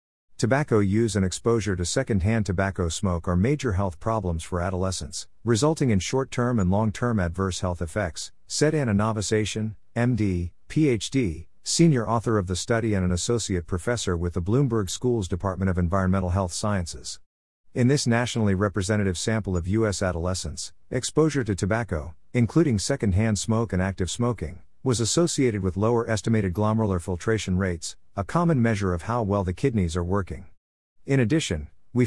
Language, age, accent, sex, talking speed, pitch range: English, 50-69, American, male, 160 wpm, 90-115 Hz